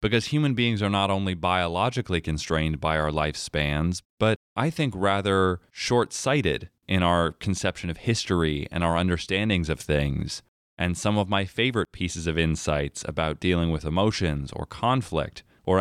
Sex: male